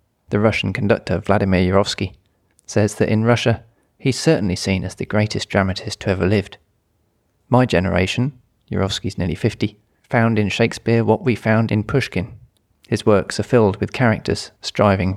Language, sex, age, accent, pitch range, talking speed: English, male, 30-49, British, 95-115 Hz, 155 wpm